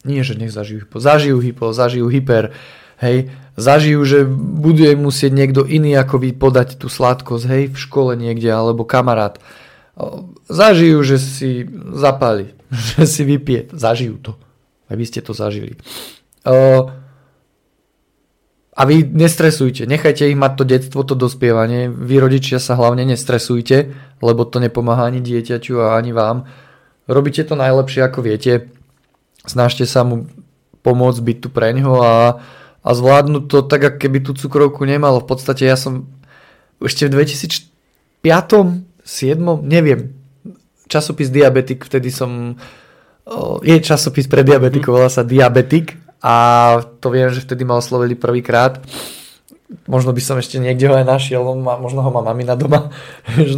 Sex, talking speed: male, 145 wpm